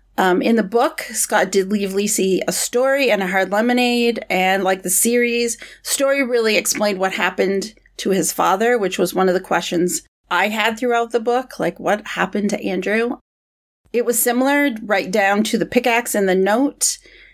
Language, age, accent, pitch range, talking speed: English, 40-59, American, 190-240 Hz, 185 wpm